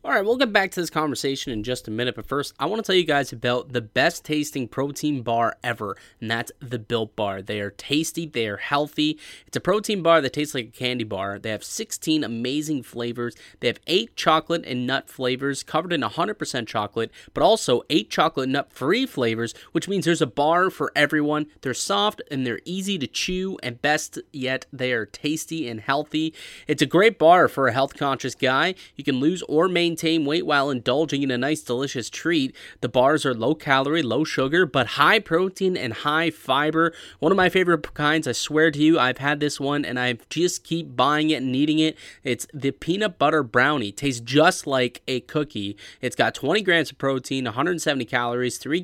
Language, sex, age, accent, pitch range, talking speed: English, male, 20-39, American, 125-160 Hz, 205 wpm